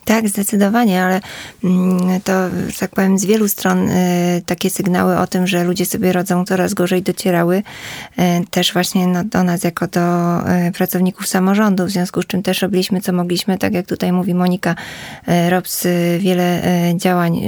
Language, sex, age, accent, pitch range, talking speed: Polish, female, 20-39, native, 180-195 Hz, 150 wpm